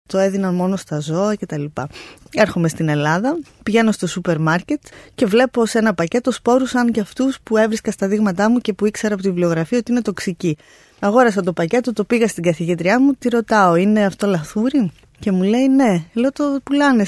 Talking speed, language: 205 wpm, Greek